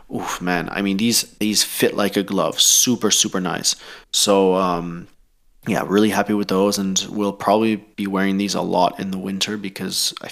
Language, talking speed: English, 190 wpm